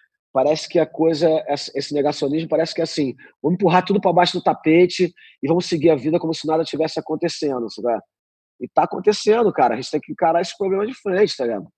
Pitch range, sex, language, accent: 155-205 Hz, male, Portuguese, Brazilian